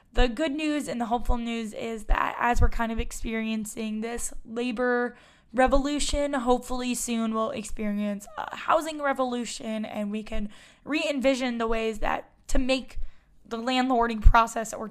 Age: 10-29